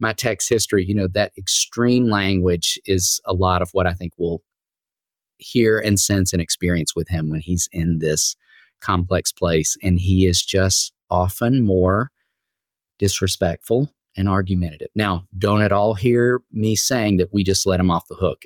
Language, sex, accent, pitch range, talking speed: English, male, American, 90-105 Hz, 170 wpm